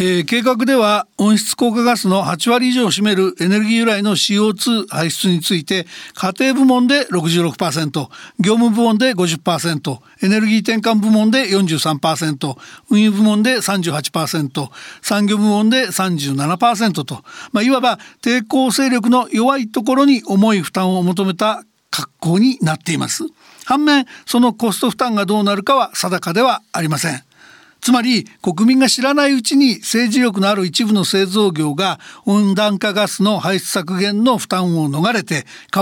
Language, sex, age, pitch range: Japanese, male, 60-79, 185-245 Hz